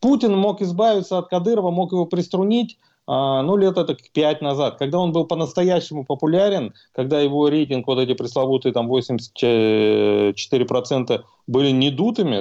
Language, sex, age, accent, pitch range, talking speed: Russian, male, 30-49, native, 150-205 Hz, 140 wpm